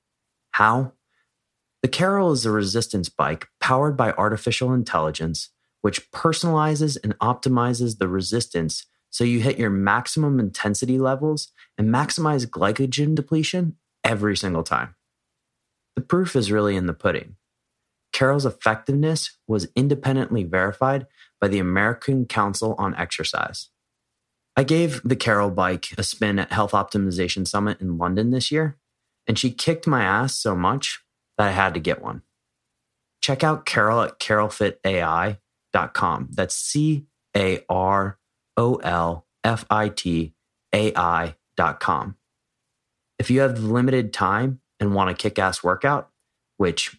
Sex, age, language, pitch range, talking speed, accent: male, 30-49, English, 100-130 Hz, 120 wpm, American